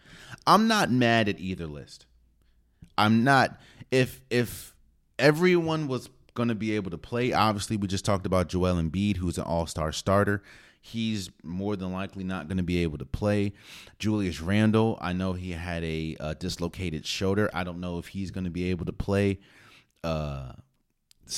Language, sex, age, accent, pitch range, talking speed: English, male, 30-49, American, 85-110 Hz, 175 wpm